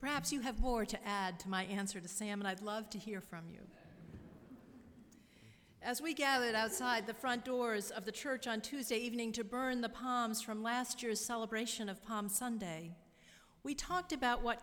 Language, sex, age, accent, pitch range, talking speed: English, female, 50-69, American, 190-255 Hz, 190 wpm